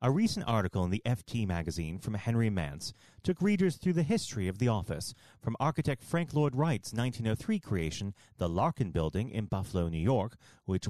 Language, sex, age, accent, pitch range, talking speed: English, male, 40-59, American, 100-155 Hz, 180 wpm